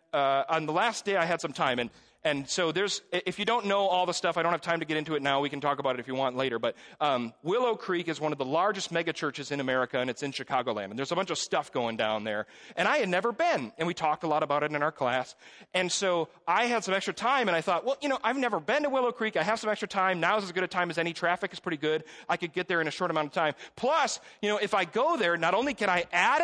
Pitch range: 160-235 Hz